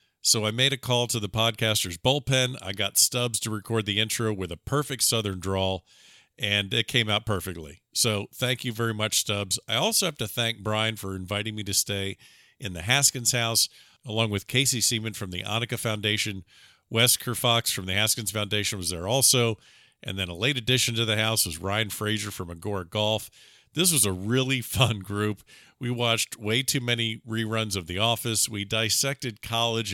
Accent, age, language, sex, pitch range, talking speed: American, 50-69, English, male, 100-120 Hz, 190 wpm